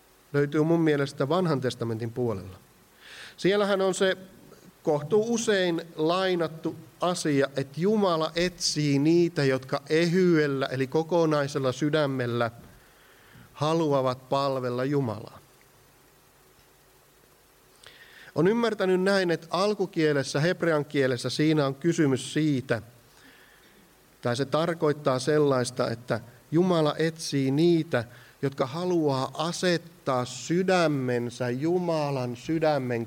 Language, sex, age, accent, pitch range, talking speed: Finnish, male, 50-69, native, 125-165 Hz, 95 wpm